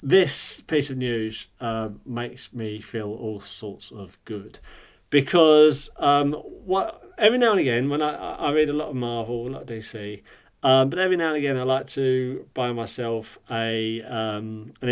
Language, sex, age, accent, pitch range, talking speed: English, male, 40-59, British, 115-155 Hz, 180 wpm